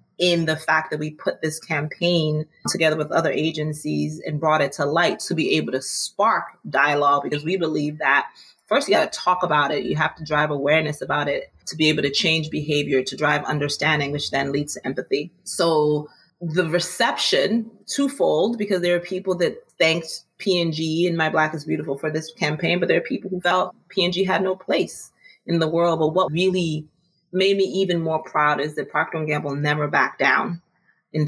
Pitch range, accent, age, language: 155-180 Hz, American, 30-49, English